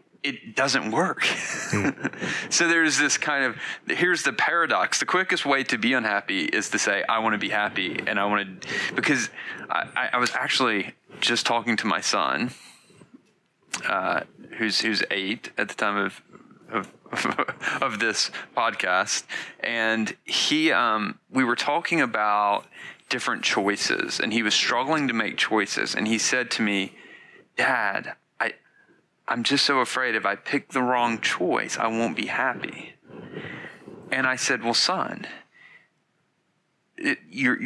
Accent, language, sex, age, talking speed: American, English, male, 30-49, 150 wpm